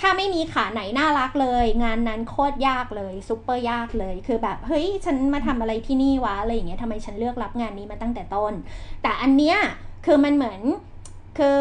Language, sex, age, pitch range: Thai, female, 20-39, 225-285 Hz